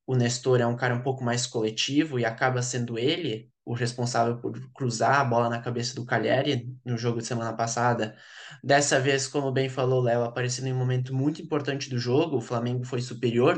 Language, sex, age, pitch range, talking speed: Portuguese, male, 20-39, 120-130 Hz, 210 wpm